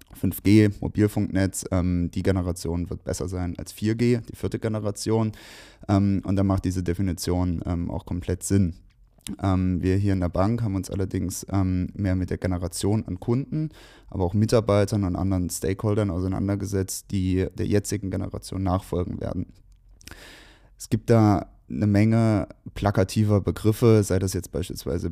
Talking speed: 150 wpm